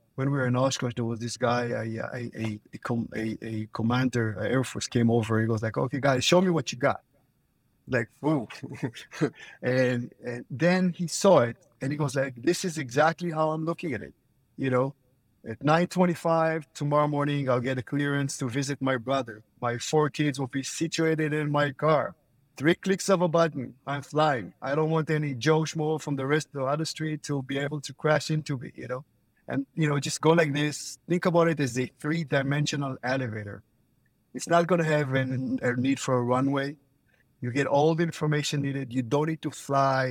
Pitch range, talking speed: 125-155 Hz, 200 wpm